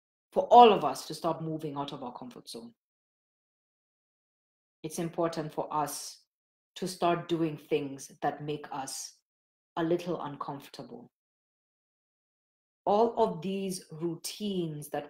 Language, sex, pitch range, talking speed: English, female, 150-180 Hz, 125 wpm